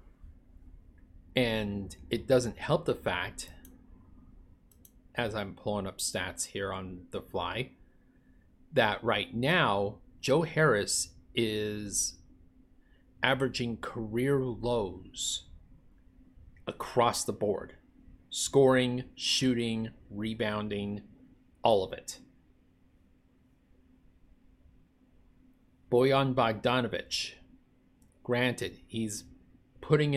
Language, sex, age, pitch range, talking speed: English, male, 30-49, 90-120 Hz, 75 wpm